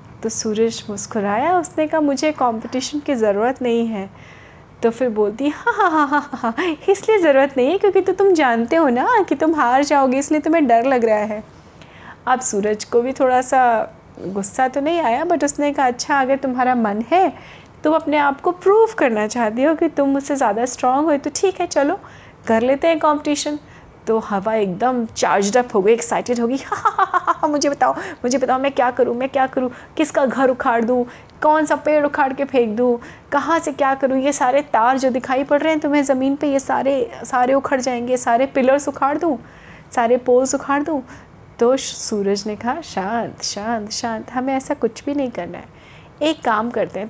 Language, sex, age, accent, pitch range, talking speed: Hindi, female, 30-49, native, 235-300 Hz, 205 wpm